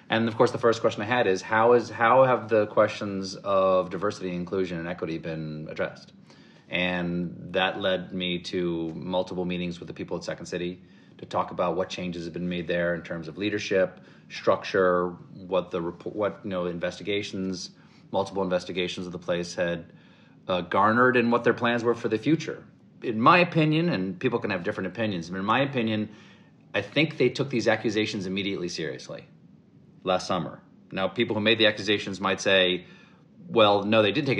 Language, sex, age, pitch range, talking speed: English, male, 30-49, 90-115 Hz, 185 wpm